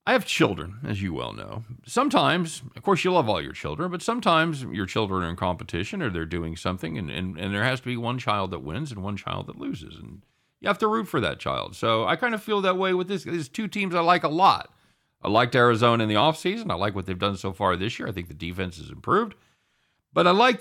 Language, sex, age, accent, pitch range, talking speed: English, male, 50-69, American, 90-140 Hz, 265 wpm